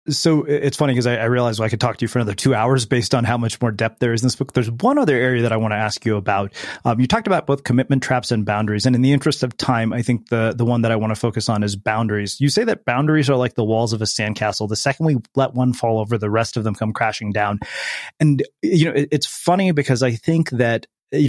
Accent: American